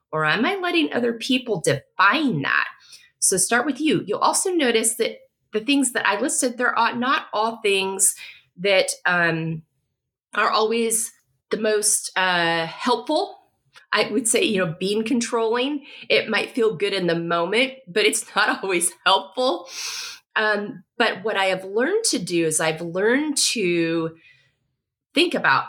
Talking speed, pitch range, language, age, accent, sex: 155 wpm, 150-225 Hz, English, 30-49, American, female